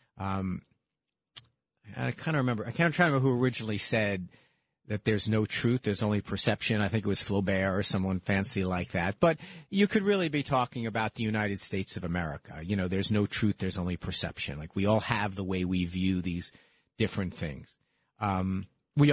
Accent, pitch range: American, 100-135 Hz